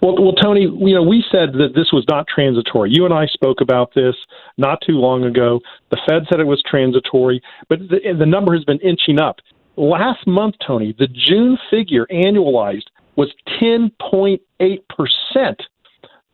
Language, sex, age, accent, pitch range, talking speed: English, male, 50-69, American, 135-190 Hz, 165 wpm